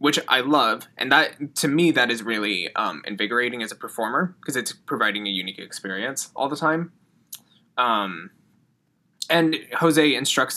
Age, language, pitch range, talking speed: 20-39, English, 110-155 Hz, 160 wpm